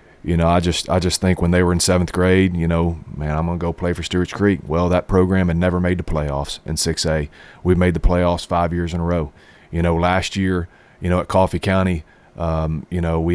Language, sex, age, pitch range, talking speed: English, male, 40-59, 80-90 Hz, 250 wpm